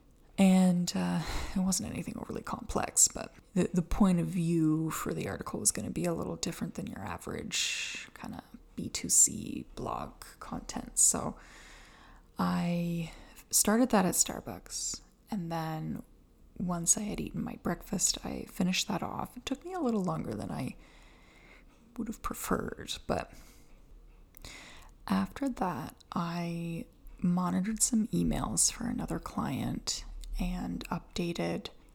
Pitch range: 170-215 Hz